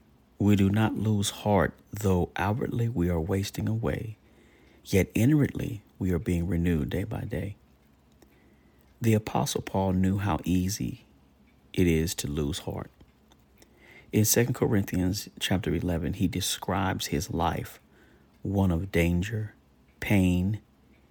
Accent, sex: American, male